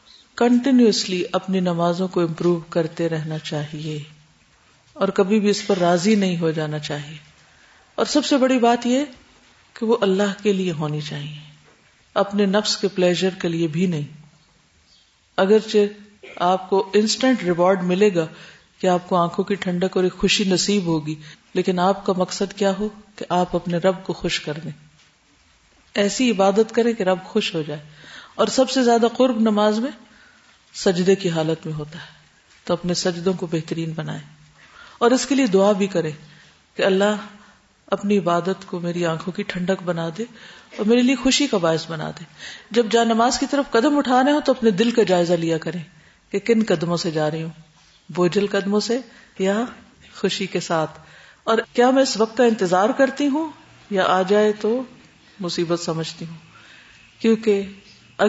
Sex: female